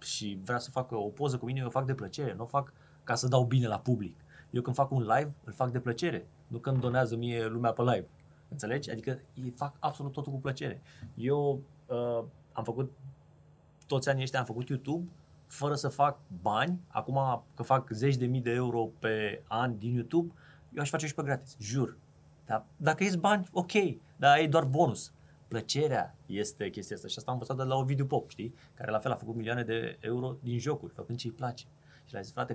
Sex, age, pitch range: male, 20-39, 120-145 Hz